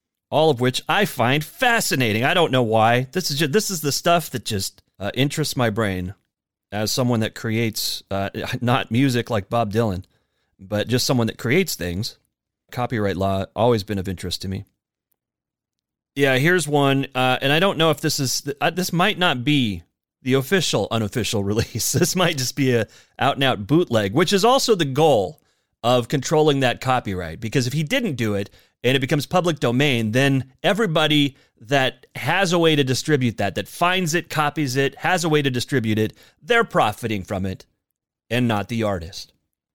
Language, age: English, 30-49